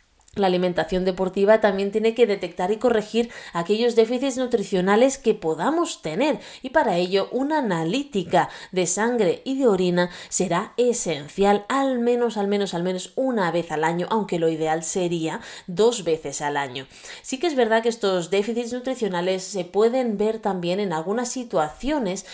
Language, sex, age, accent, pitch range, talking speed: Spanish, female, 20-39, Spanish, 180-240 Hz, 160 wpm